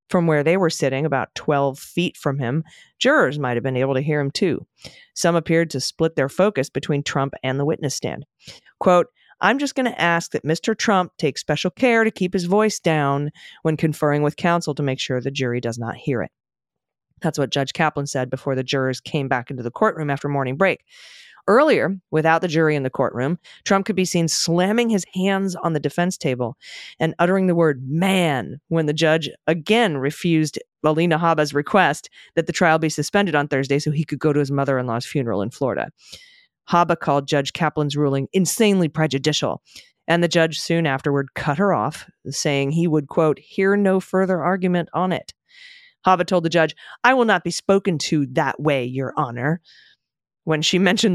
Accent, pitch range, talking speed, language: American, 140-185 Hz, 195 wpm, English